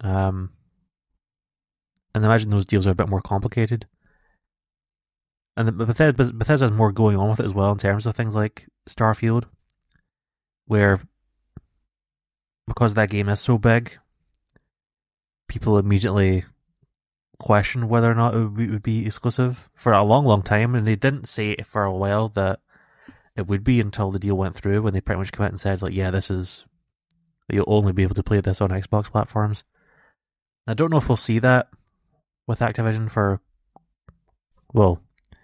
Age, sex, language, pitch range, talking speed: 20-39, male, English, 100-115 Hz, 170 wpm